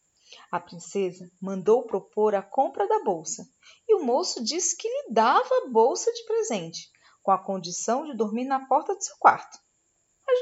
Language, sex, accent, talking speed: Portuguese, female, Brazilian, 175 wpm